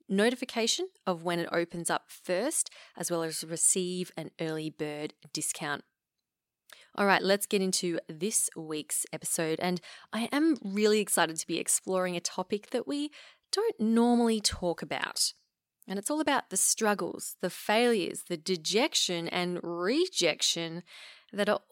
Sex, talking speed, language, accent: female, 145 wpm, English, Australian